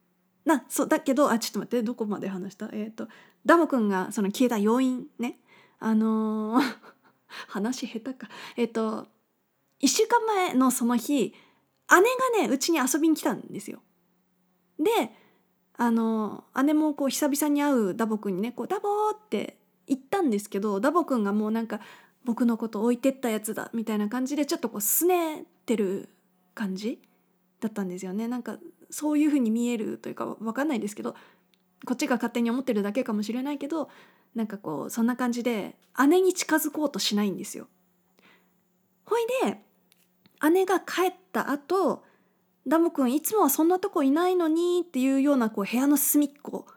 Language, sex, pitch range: Japanese, female, 205-290 Hz